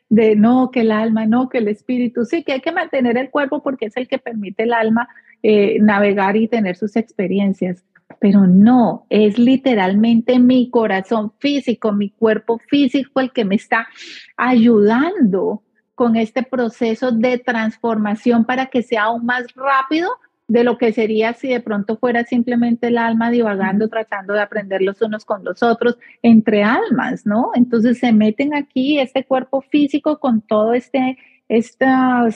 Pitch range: 215-255 Hz